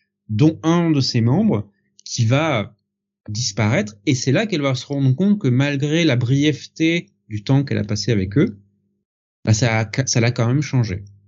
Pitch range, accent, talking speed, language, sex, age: 110-155 Hz, French, 185 wpm, French, male, 30-49